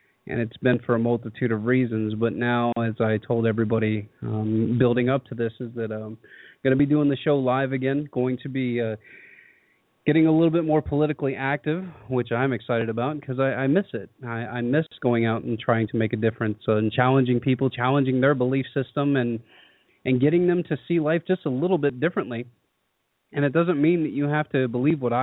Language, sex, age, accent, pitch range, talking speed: English, male, 30-49, American, 115-135 Hz, 220 wpm